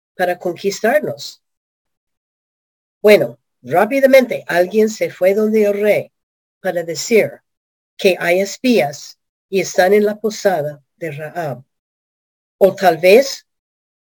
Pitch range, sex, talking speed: 170-215 Hz, female, 105 wpm